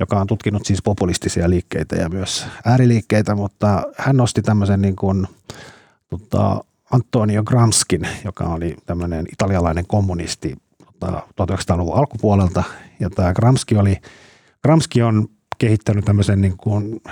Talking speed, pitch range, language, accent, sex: 115 wpm, 90-110 Hz, Finnish, native, male